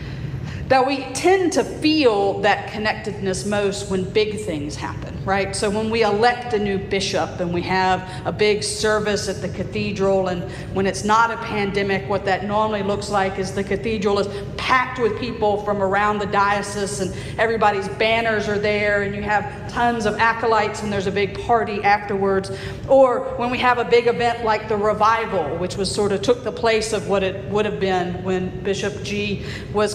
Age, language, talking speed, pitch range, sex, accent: 40-59, English, 190 wpm, 195-230 Hz, female, American